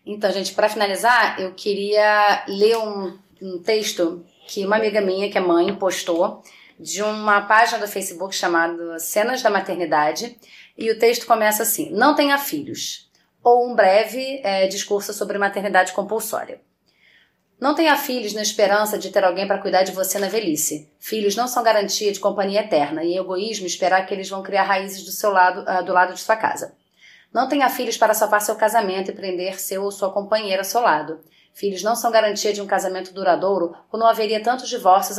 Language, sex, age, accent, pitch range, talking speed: Portuguese, female, 30-49, Brazilian, 185-225 Hz, 190 wpm